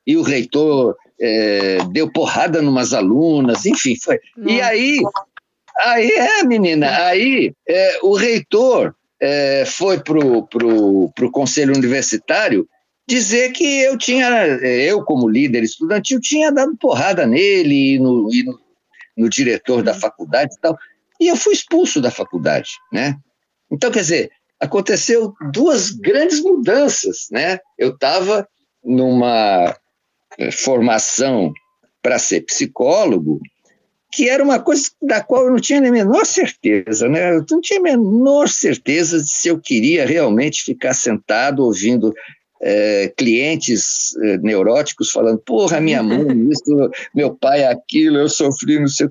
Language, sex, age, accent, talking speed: Portuguese, male, 50-69, Brazilian, 140 wpm